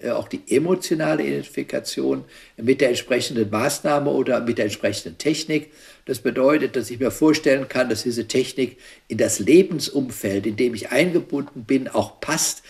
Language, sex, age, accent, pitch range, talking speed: English, male, 60-79, German, 115-145 Hz, 155 wpm